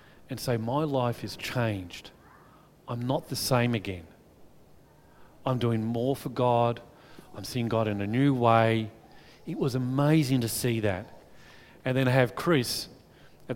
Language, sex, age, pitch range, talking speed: English, male, 40-59, 125-175 Hz, 155 wpm